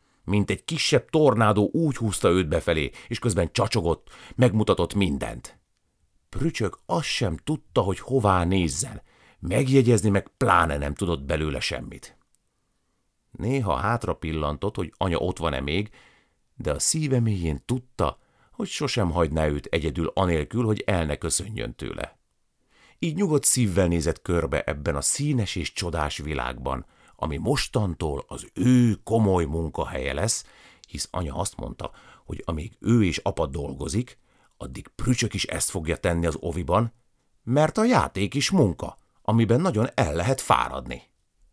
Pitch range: 80-115 Hz